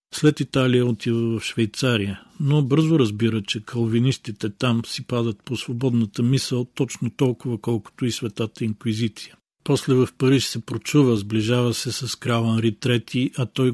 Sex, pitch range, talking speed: male, 110-125 Hz, 155 wpm